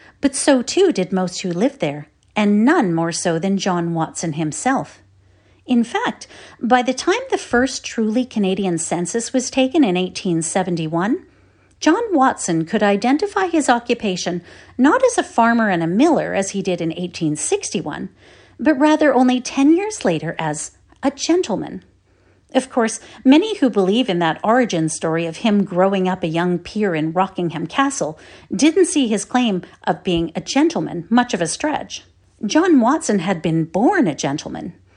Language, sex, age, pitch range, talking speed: English, female, 40-59, 170-265 Hz, 165 wpm